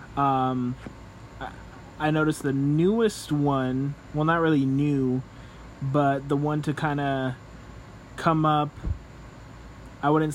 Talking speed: 115 wpm